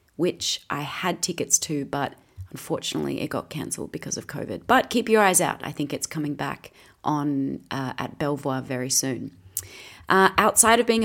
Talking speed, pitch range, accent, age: 180 wpm, 145-200 Hz, Australian, 30-49